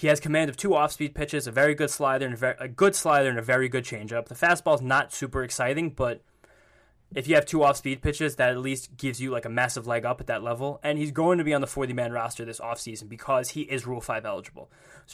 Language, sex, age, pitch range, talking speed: English, male, 10-29, 120-150 Hz, 240 wpm